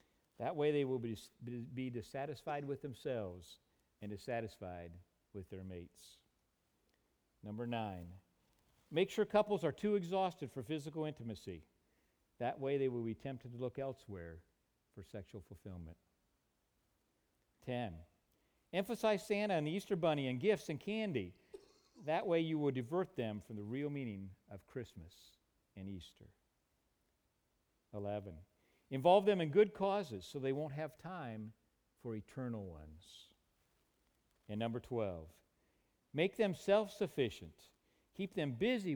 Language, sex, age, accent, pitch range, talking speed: English, male, 50-69, American, 95-150 Hz, 130 wpm